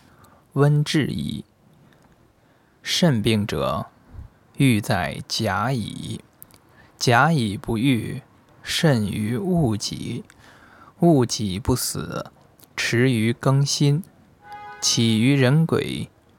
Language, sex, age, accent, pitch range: Chinese, male, 20-39, native, 110-140 Hz